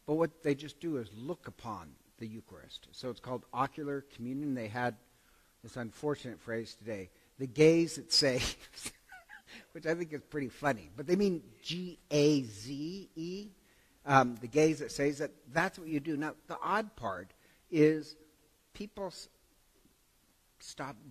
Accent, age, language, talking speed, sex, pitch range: American, 60-79, English, 155 wpm, male, 120-160 Hz